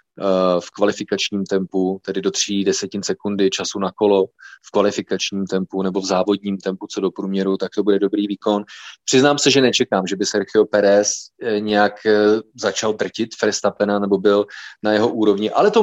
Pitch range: 100-120 Hz